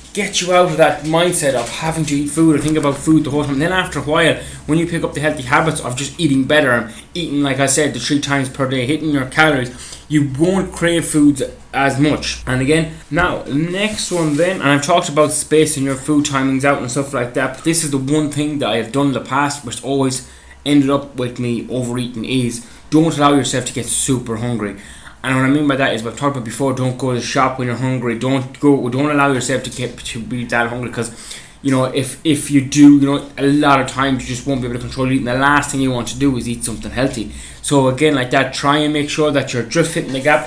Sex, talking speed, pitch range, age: male, 260 wpm, 125-150 Hz, 20-39